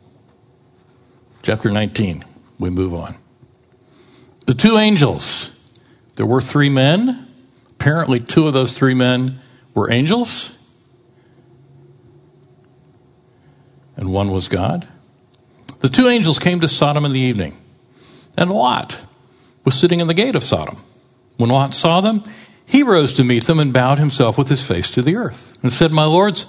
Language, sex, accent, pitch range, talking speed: English, male, American, 125-160 Hz, 145 wpm